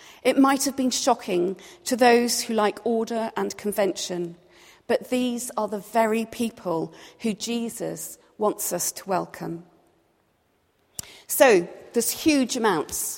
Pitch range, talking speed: 195-245 Hz, 130 wpm